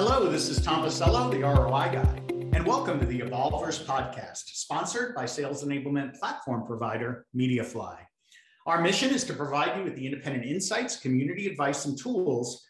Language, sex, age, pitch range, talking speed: English, male, 50-69, 135-175 Hz, 165 wpm